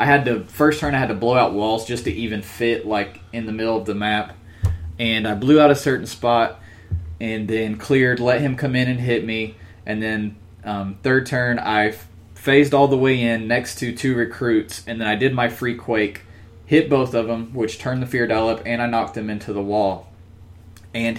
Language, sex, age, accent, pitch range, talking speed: English, male, 20-39, American, 100-125 Hz, 225 wpm